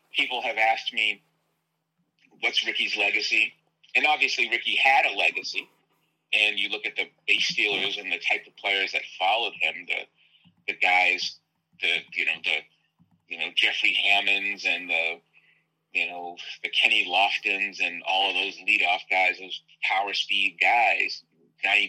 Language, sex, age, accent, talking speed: English, male, 30-49, American, 155 wpm